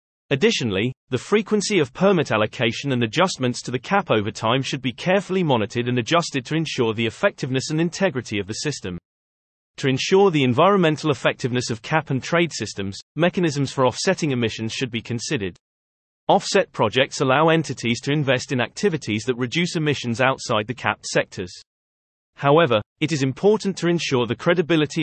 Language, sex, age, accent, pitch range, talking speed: English, male, 30-49, British, 115-160 Hz, 165 wpm